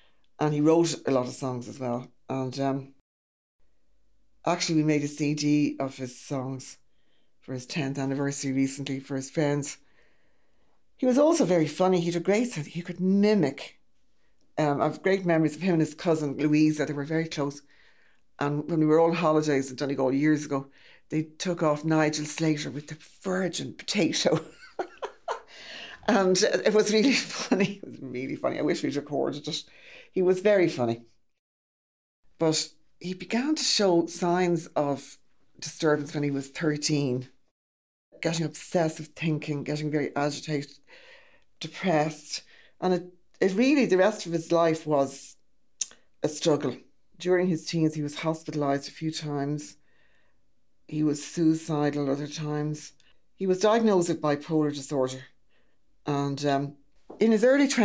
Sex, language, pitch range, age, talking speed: female, English, 140-170 Hz, 60-79, 150 wpm